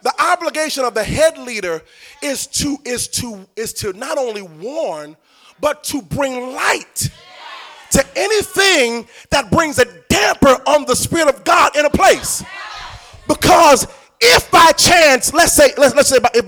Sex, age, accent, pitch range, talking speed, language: male, 30-49, American, 245-335 Hz, 155 wpm, English